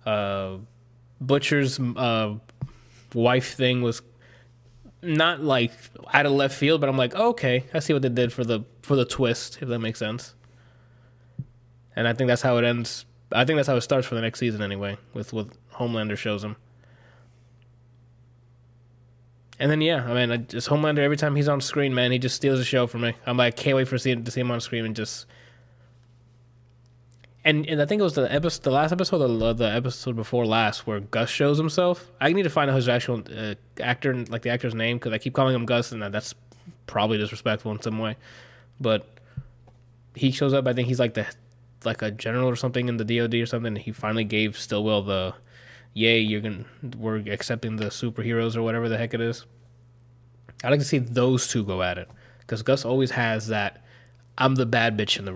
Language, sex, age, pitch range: English, male, 20-39, 115-125 Hz